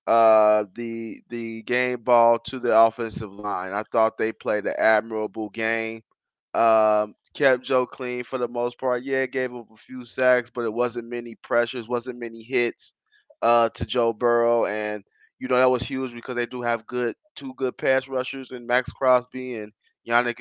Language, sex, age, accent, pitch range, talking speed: English, male, 20-39, American, 115-130 Hz, 180 wpm